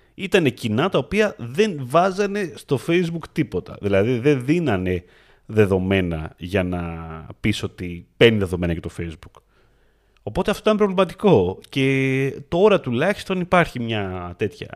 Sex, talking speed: male, 130 wpm